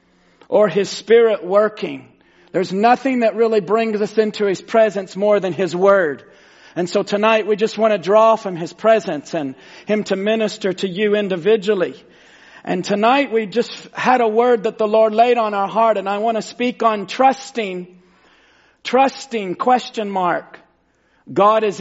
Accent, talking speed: American, 170 wpm